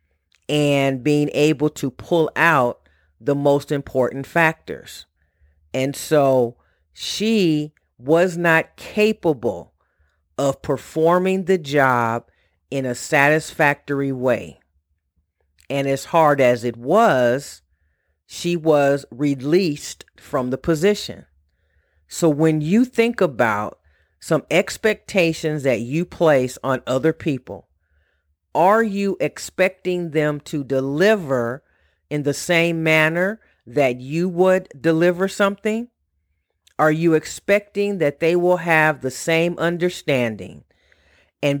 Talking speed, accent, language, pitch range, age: 110 wpm, American, English, 120-170 Hz, 40-59